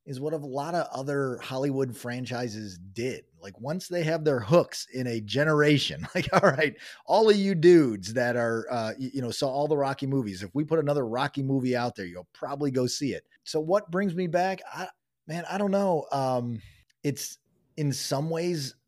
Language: English